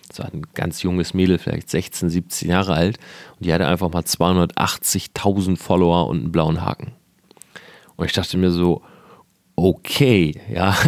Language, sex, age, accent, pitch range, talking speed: German, male, 40-59, German, 90-115 Hz, 155 wpm